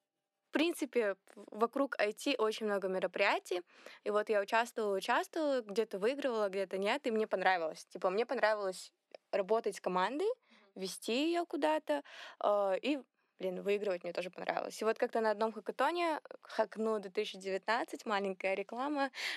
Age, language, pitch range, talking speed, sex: 20-39, Russian, 205-245 Hz, 135 wpm, female